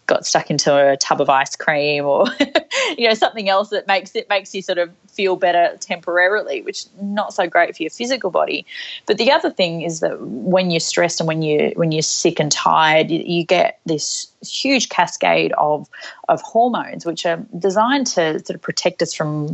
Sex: female